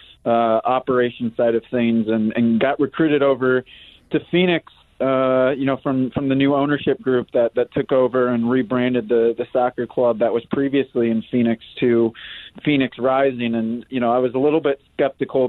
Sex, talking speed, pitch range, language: male, 185 wpm, 120-140 Hz, English